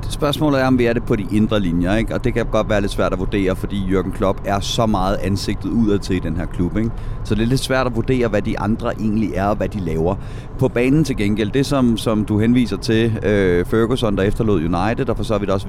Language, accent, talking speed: Danish, native, 270 wpm